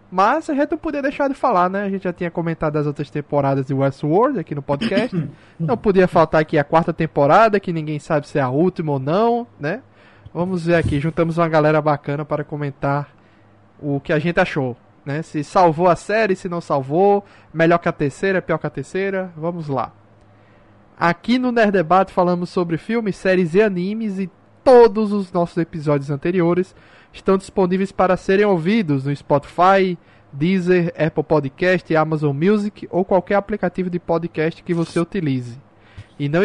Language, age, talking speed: Portuguese, 20-39, 180 wpm